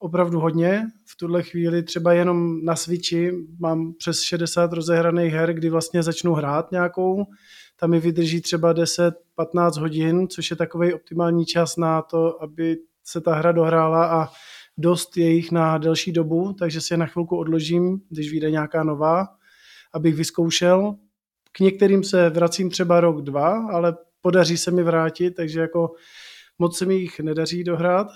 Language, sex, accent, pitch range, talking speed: Czech, male, native, 165-175 Hz, 160 wpm